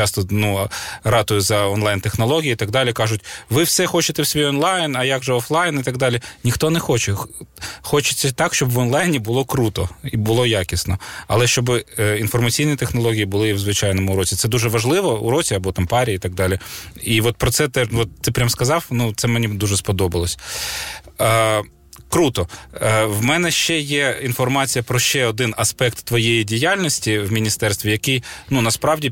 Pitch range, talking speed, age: 110-135 Hz, 180 wpm, 20-39